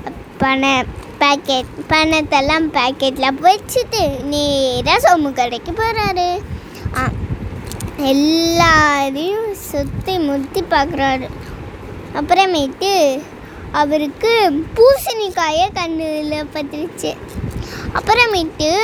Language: Tamil